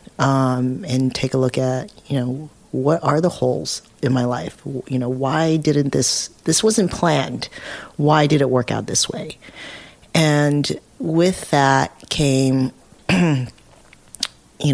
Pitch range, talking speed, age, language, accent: 125-150 Hz, 145 wpm, 40-59, English, American